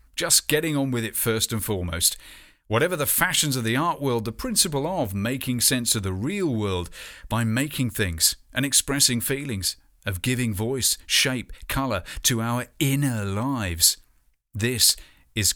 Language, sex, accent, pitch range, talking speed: English, male, British, 95-140 Hz, 160 wpm